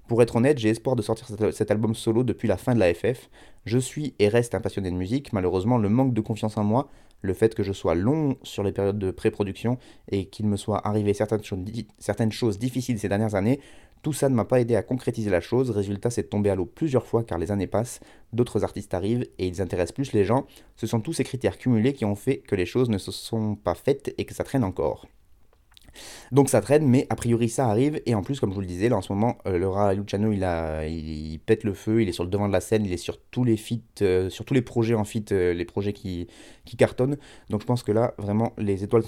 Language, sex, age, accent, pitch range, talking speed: French, male, 20-39, French, 95-120 Hz, 260 wpm